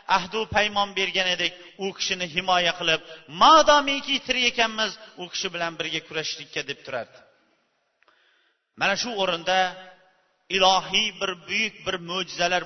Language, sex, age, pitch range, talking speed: Bulgarian, male, 40-59, 180-240 Hz, 135 wpm